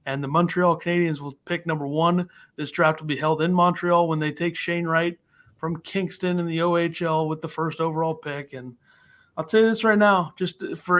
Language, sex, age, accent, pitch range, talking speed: English, male, 30-49, American, 150-180 Hz, 215 wpm